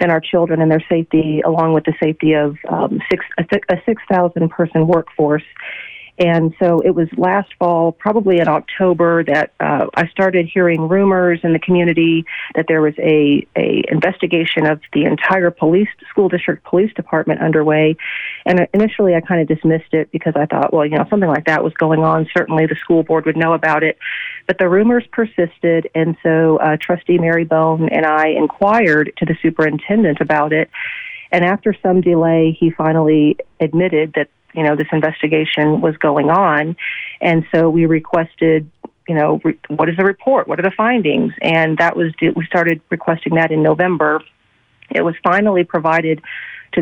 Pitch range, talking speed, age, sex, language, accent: 155-180 Hz, 180 wpm, 40-59, female, English, American